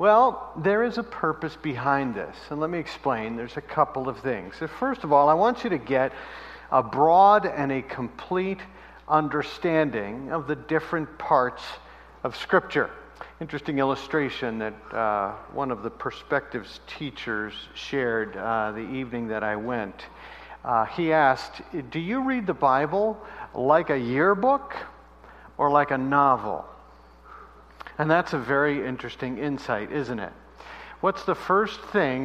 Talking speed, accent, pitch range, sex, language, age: 145 wpm, American, 120-170 Hz, male, English, 50-69